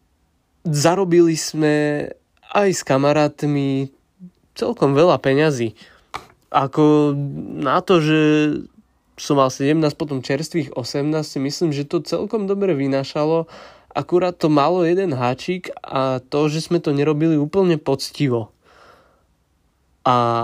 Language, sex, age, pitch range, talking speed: Slovak, male, 20-39, 125-160 Hz, 110 wpm